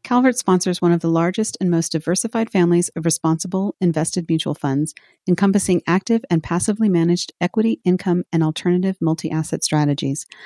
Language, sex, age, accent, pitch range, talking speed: English, female, 40-59, American, 160-190 Hz, 150 wpm